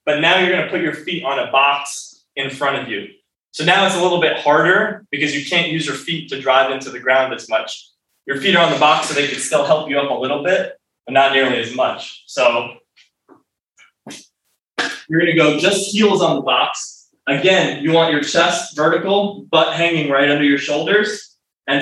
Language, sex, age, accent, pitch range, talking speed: English, male, 20-39, American, 140-180 Hz, 215 wpm